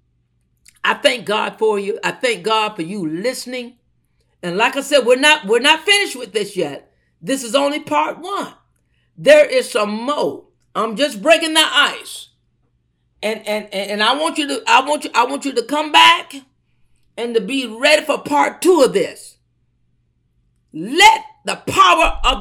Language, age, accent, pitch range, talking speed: English, 50-69, American, 185-280 Hz, 180 wpm